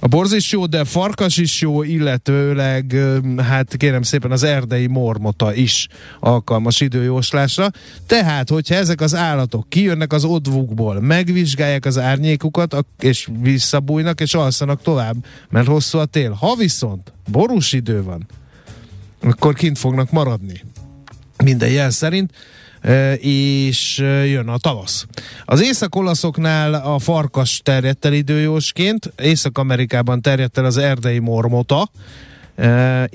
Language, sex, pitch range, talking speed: Hungarian, male, 120-150 Hz, 125 wpm